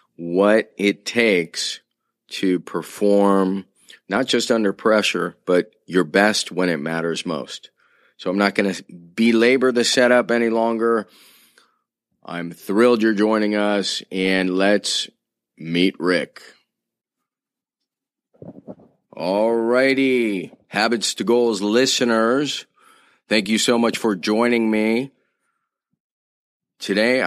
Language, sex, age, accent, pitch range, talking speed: English, male, 40-59, American, 100-120 Hz, 110 wpm